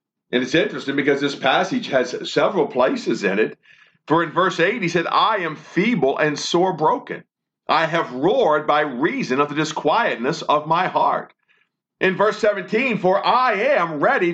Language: English